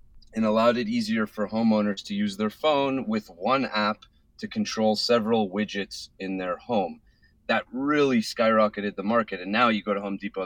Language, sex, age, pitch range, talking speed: English, male, 30-49, 95-120 Hz, 185 wpm